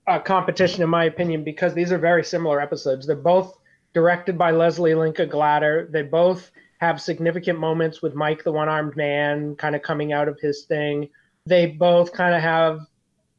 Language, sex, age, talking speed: English, male, 30-49, 175 wpm